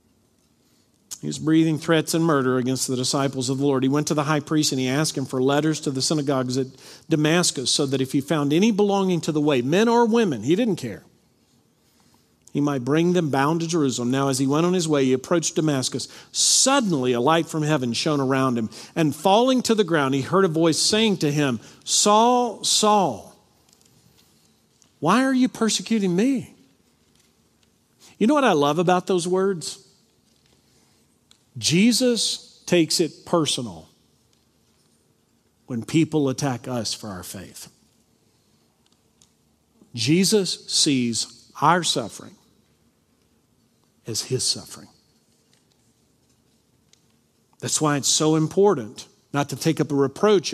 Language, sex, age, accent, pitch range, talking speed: English, male, 50-69, American, 125-175 Hz, 150 wpm